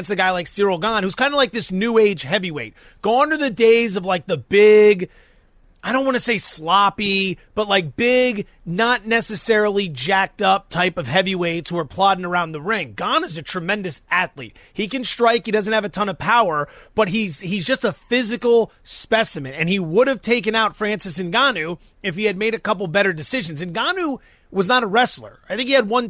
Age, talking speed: 30-49, 210 wpm